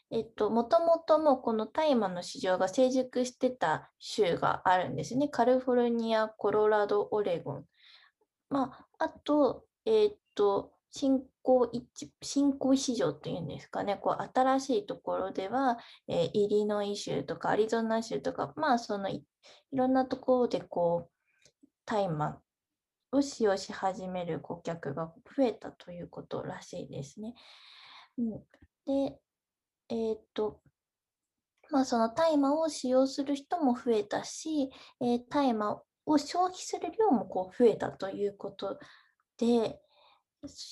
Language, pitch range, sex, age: Japanese, 215-285 Hz, female, 20-39